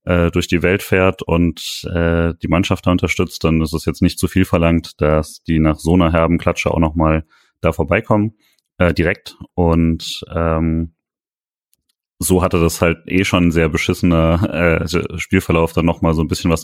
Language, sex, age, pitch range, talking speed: German, male, 30-49, 80-90 Hz, 180 wpm